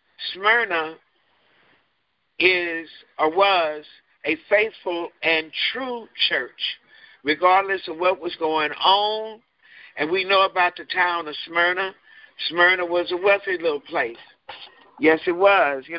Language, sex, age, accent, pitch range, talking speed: English, male, 50-69, American, 170-200 Hz, 125 wpm